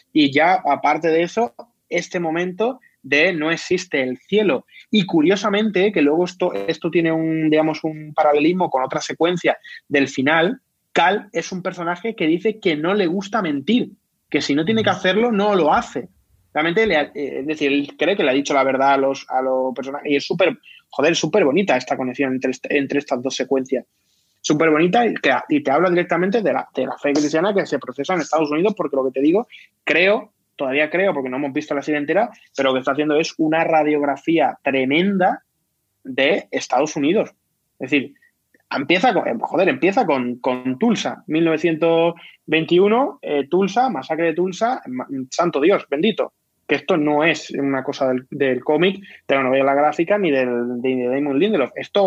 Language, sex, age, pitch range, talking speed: Spanish, male, 20-39, 140-185 Hz, 185 wpm